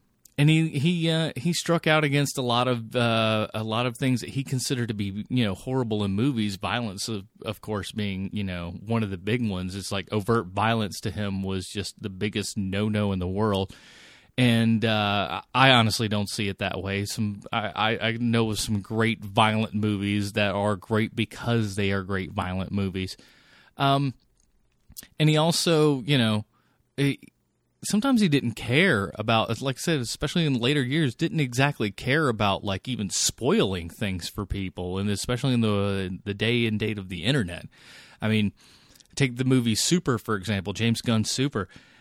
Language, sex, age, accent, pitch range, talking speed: English, male, 30-49, American, 105-140 Hz, 190 wpm